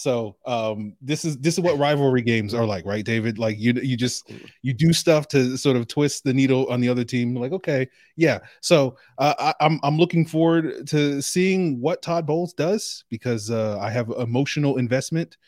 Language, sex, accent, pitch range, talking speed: English, male, American, 115-145 Hz, 205 wpm